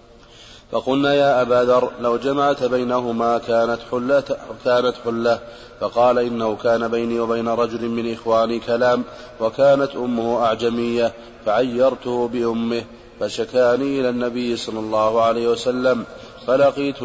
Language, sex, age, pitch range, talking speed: Arabic, male, 30-49, 115-125 Hz, 115 wpm